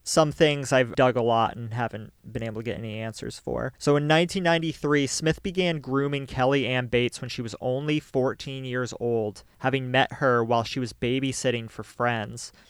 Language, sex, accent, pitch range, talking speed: English, male, American, 125-150 Hz, 190 wpm